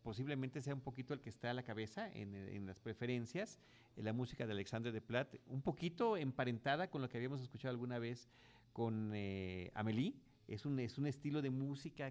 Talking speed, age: 205 wpm, 40-59